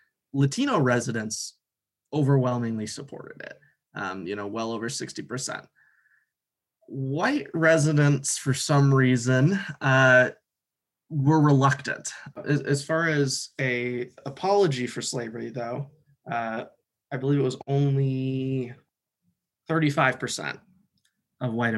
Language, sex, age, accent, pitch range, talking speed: English, male, 20-39, American, 120-140 Hz, 100 wpm